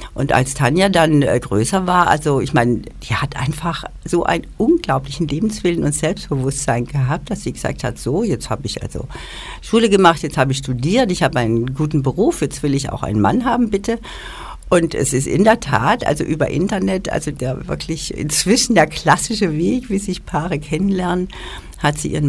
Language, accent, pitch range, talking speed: German, German, 135-180 Hz, 185 wpm